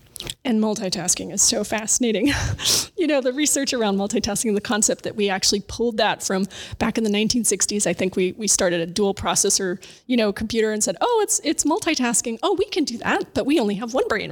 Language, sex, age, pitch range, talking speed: English, female, 30-49, 225-255 Hz, 215 wpm